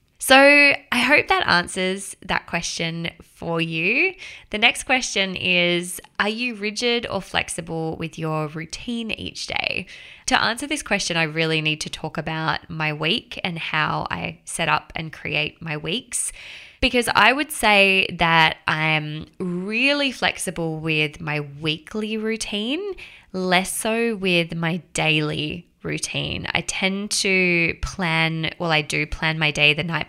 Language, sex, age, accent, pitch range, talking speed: English, female, 20-39, Australian, 155-195 Hz, 150 wpm